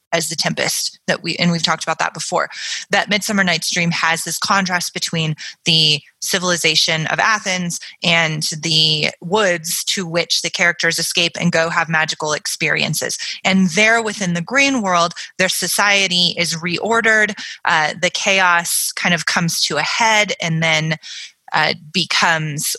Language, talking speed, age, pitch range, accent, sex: English, 155 wpm, 20-39, 165-200 Hz, American, female